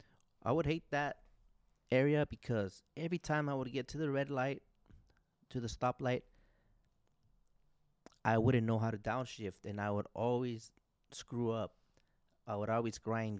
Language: English